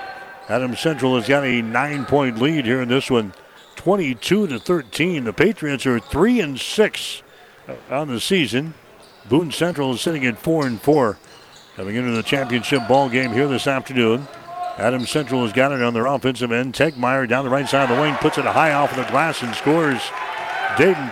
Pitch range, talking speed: 130-165 Hz, 195 wpm